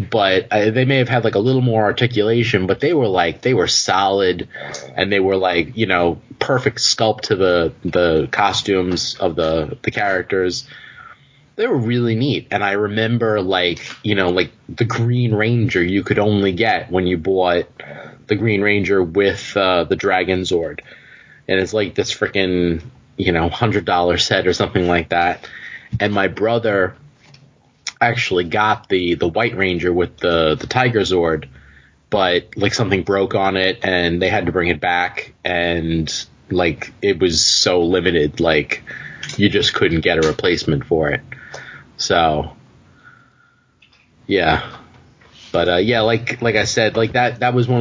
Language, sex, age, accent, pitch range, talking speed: English, male, 30-49, American, 90-115 Hz, 170 wpm